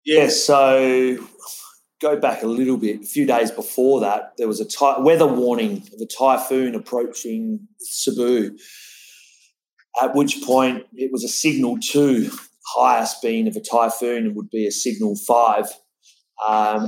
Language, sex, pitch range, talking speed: English, male, 120-145 Hz, 155 wpm